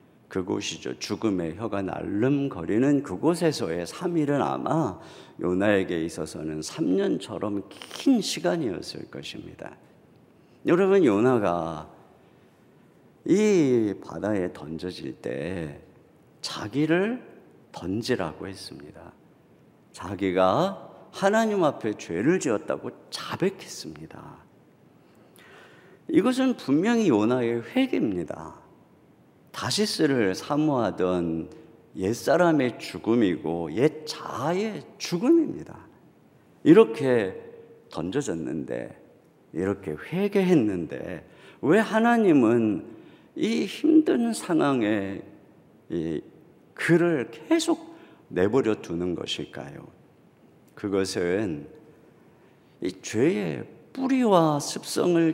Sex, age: male, 50-69